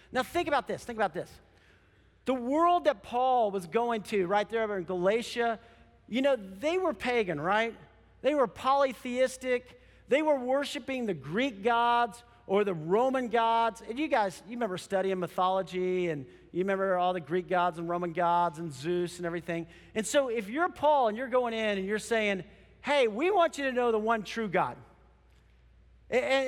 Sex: male